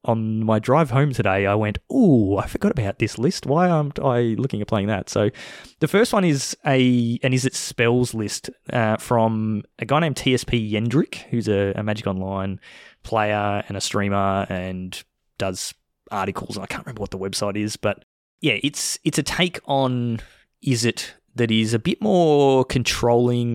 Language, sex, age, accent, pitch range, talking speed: English, male, 20-39, Australian, 105-140 Hz, 185 wpm